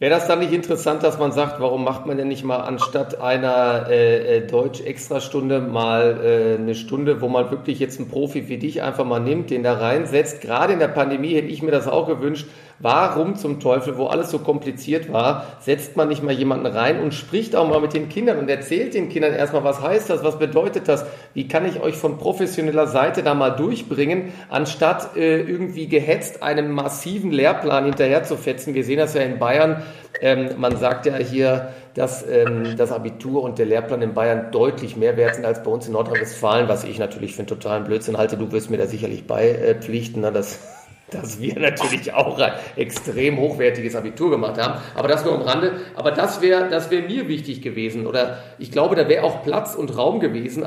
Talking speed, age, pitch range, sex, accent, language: 210 wpm, 40-59, 125-155 Hz, male, German, German